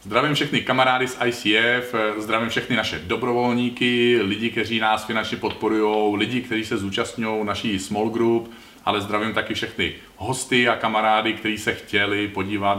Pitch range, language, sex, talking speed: 100-115 Hz, Czech, male, 150 wpm